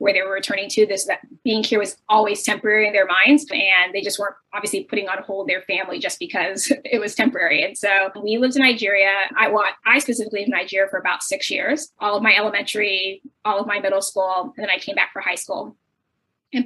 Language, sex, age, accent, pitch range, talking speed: English, female, 20-39, American, 190-220 Hz, 240 wpm